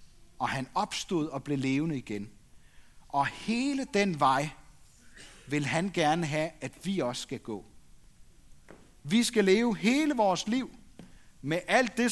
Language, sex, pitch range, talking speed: Danish, male, 135-205 Hz, 145 wpm